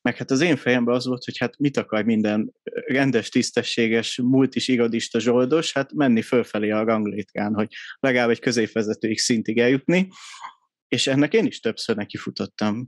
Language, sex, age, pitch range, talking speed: Hungarian, male, 30-49, 110-135 Hz, 165 wpm